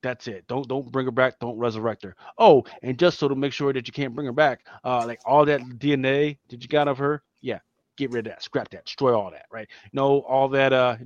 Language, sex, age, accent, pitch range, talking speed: English, male, 20-39, American, 115-135 Hz, 265 wpm